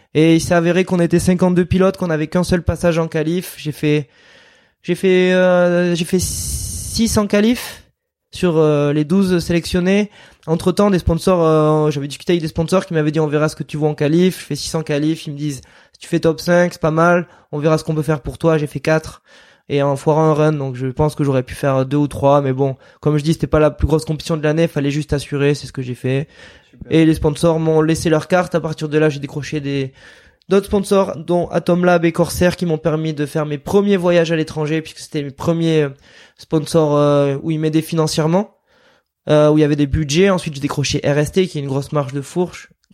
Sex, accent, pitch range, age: male, French, 150-180 Hz, 20-39